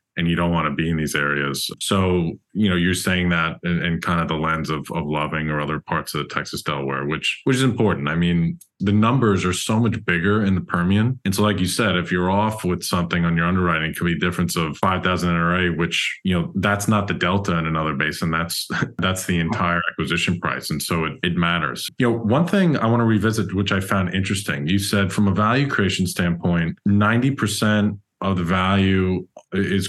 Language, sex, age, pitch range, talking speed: English, male, 20-39, 85-110 Hz, 225 wpm